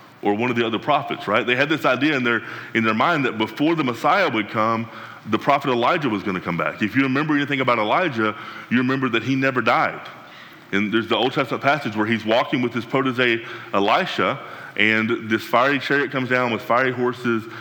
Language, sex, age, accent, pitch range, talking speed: English, male, 20-39, American, 110-130 Hz, 220 wpm